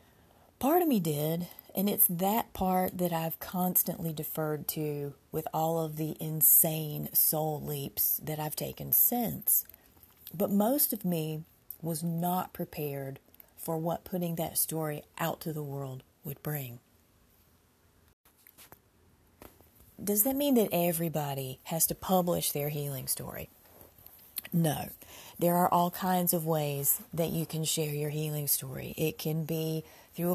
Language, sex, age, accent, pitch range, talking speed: English, female, 30-49, American, 145-175 Hz, 140 wpm